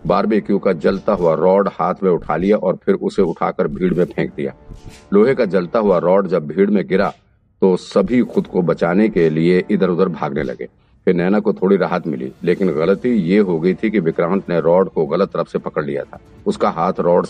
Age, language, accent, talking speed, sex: 50-69, Hindi, native, 220 wpm, male